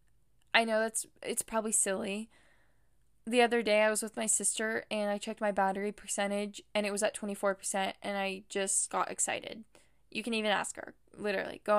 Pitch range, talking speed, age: 190-215 Hz, 190 wpm, 10-29